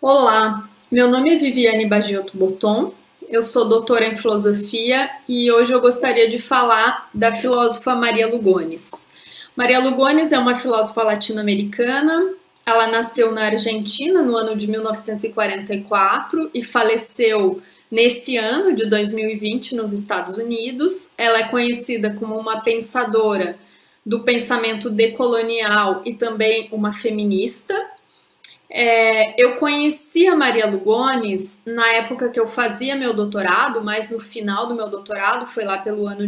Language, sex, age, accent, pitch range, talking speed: Portuguese, female, 30-49, Brazilian, 220-260 Hz, 130 wpm